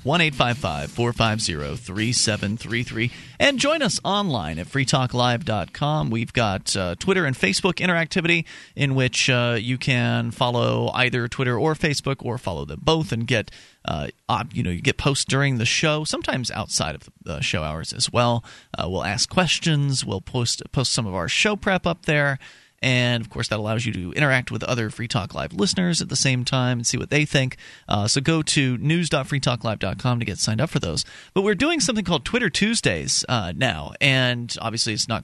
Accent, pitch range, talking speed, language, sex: American, 115-150 Hz, 185 wpm, English, male